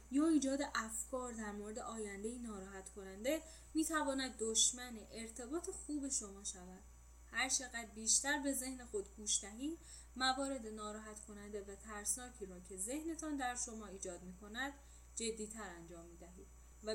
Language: Persian